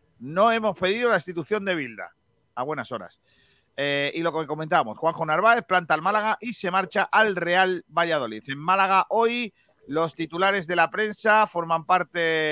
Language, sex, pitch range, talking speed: Spanish, male, 150-190 Hz, 175 wpm